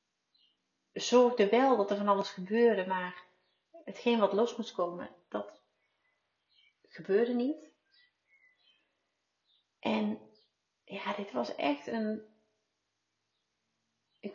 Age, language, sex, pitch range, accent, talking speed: 30-49, Dutch, female, 205-275 Hz, Dutch, 95 wpm